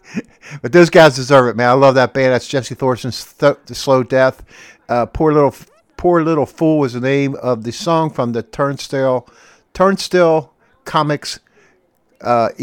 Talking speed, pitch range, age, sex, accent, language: 165 wpm, 115-145 Hz, 50-69, male, American, English